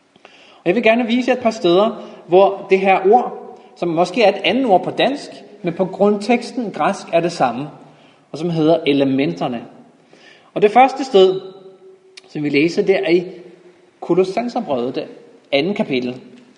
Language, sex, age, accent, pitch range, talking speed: Danish, male, 30-49, native, 160-225 Hz, 165 wpm